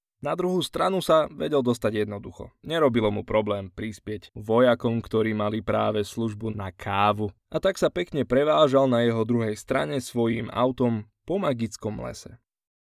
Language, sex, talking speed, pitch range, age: Slovak, male, 150 wpm, 110-140 Hz, 20-39